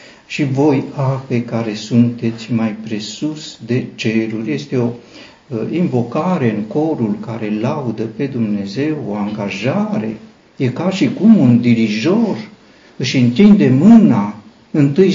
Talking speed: 120 wpm